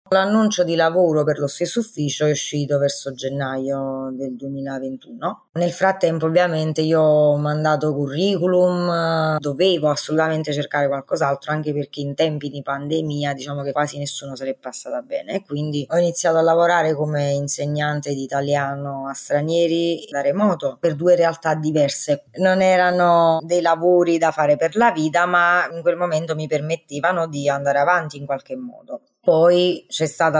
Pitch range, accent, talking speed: 140-170 Hz, native, 160 wpm